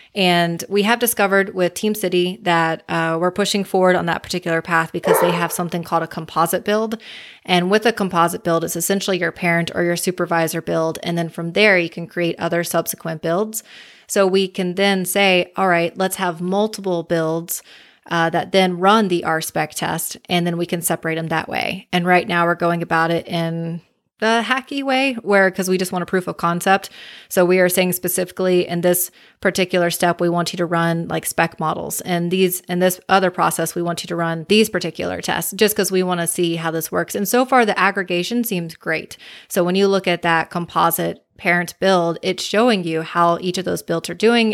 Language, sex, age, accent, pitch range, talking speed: English, female, 20-39, American, 170-205 Hz, 215 wpm